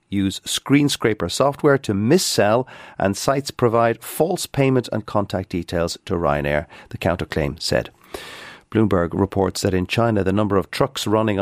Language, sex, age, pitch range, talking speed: English, male, 40-59, 100-120 Hz, 150 wpm